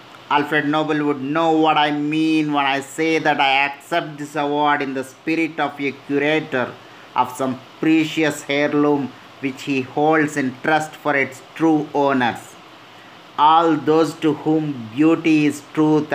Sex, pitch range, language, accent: male, 120-155 Hz, Telugu, native